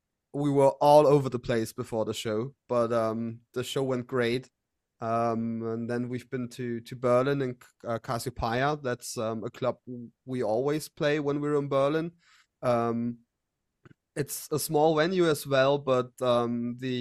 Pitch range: 115-140 Hz